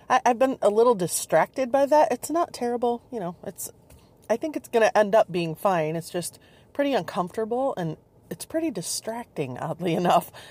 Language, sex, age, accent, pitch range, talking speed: English, female, 30-49, American, 145-215 Hz, 185 wpm